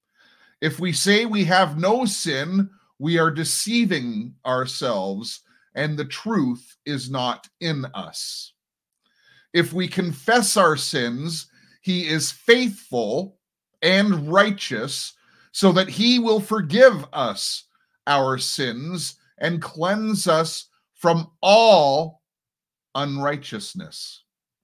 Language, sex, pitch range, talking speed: English, male, 125-190 Hz, 100 wpm